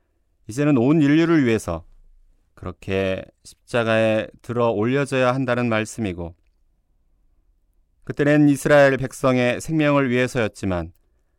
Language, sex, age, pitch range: Korean, male, 30-49, 85-125 Hz